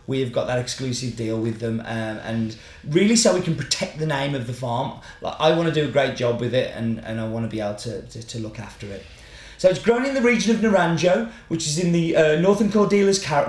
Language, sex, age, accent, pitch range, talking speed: English, male, 30-49, British, 125-170 Hz, 265 wpm